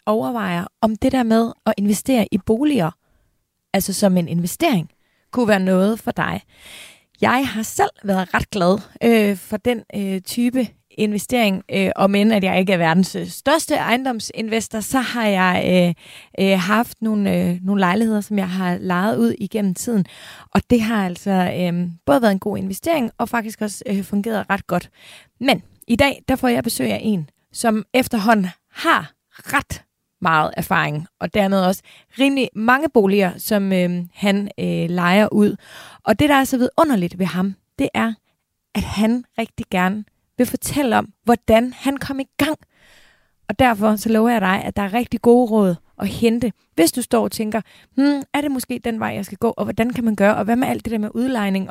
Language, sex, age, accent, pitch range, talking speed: Danish, female, 30-49, native, 190-240 Hz, 190 wpm